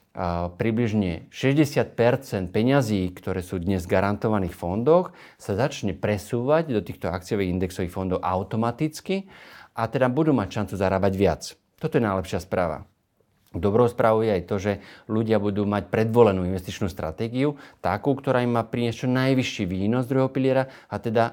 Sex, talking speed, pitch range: male, 150 wpm, 95-120 Hz